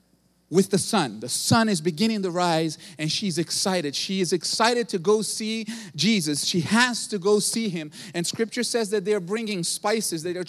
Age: 40-59